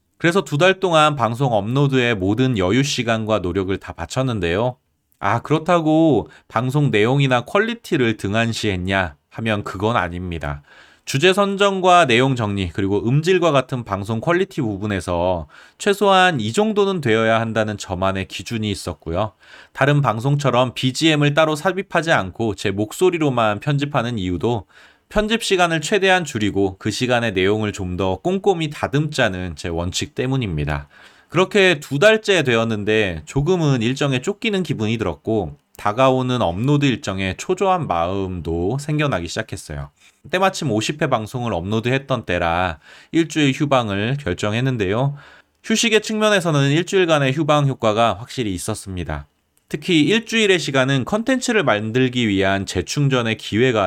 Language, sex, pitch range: Korean, male, 100-150 Hz